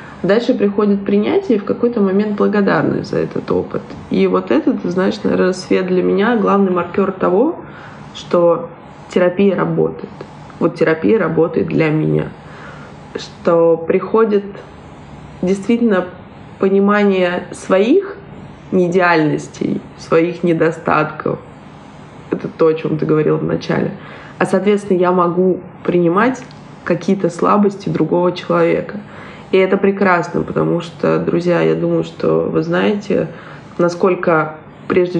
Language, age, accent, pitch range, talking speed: Russian, 20-39, native, 155-195 Hz, 115 wpm